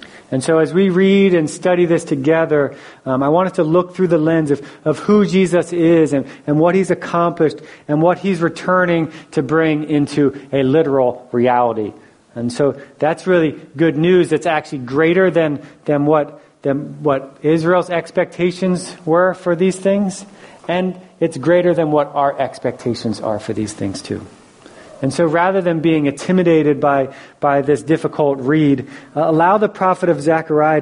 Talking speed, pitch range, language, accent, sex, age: 170 wpm, 140-170 Hz, English, American, male, 40-59